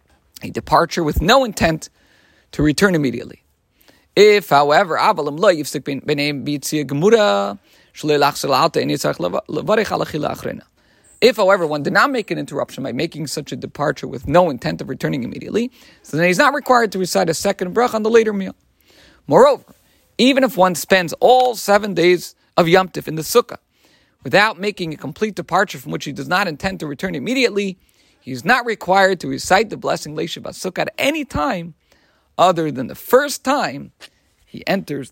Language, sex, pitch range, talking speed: English, male, 150-215 Hz, 155 wpm